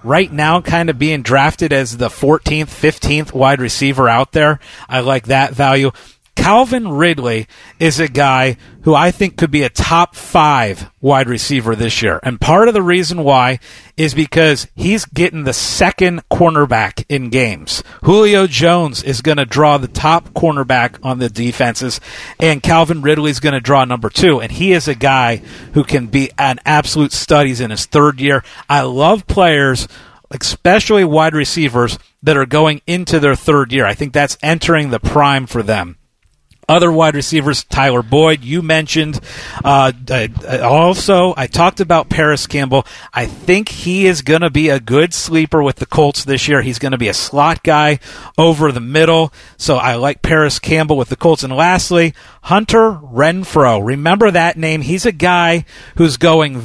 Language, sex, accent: English, male, American